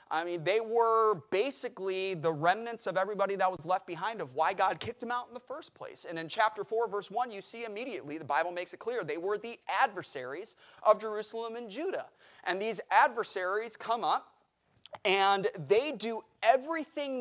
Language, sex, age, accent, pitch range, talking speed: English, male, 30-49, American, 160-220 Hz, 190 wpm